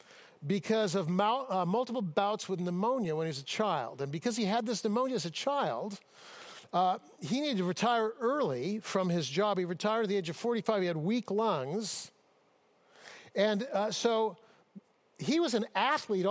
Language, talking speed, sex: English, 175 wpm, male